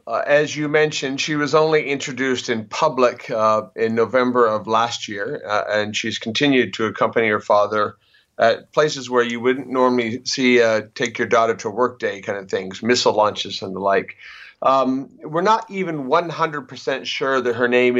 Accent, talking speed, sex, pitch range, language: American, 185 wpm, male, 115-130 Hz, English